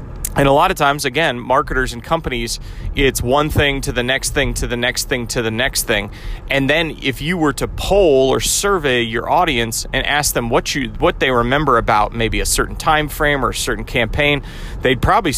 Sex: male